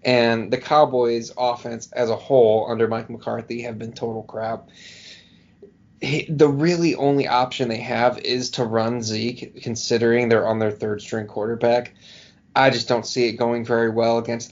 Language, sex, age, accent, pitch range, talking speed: English, male, 20-39, American, 115-130 Hz, 160 wpm